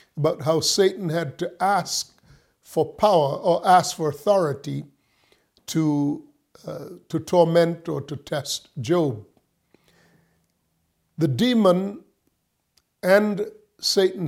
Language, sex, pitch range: English, male, 145-185 Hz